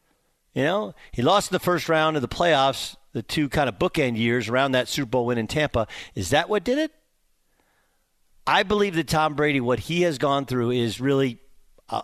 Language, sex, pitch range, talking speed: English, male, 120-155 Hz, 205 wpm